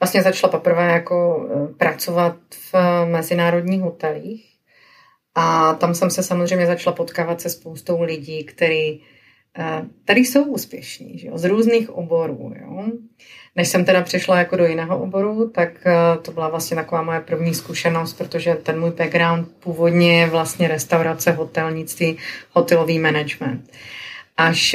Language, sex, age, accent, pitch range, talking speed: Czech, female, 30-49, native, 160-180 Hz, 135 wpm